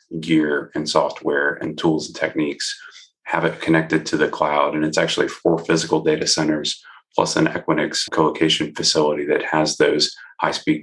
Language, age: English, 30-49